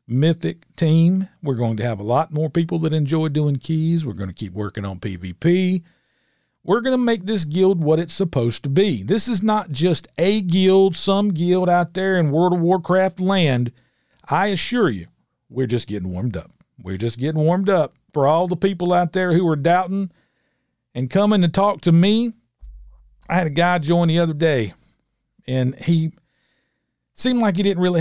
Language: English